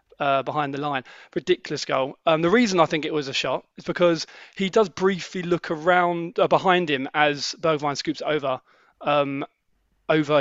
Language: English